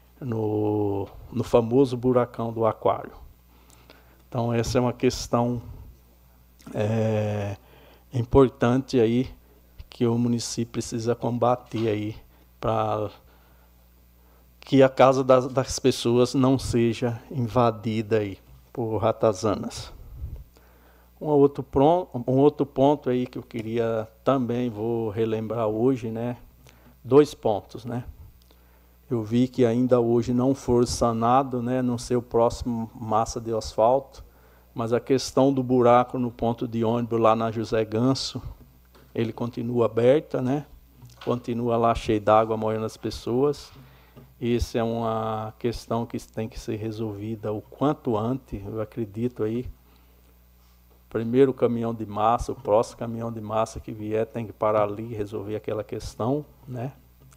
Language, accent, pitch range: Portuguese, Brazilian, 105-125 Hz